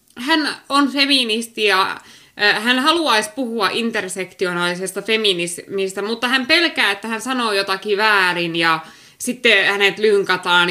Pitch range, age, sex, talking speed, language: 195-285 Hz, 20-39, female, 120 wpm, Finnish